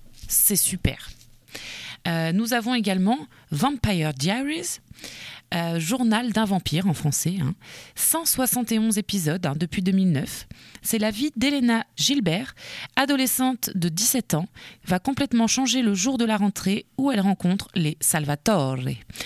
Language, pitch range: French, 165-240 Hz